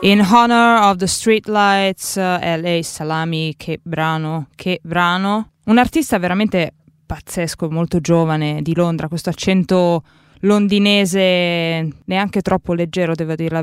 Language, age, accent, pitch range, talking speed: Italian, 20-39, native, 155-195 Hz, 130 wpm